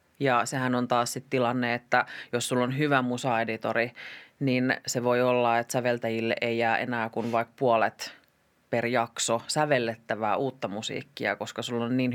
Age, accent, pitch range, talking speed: 30-49, native, 120-145 Hz, 165 wpm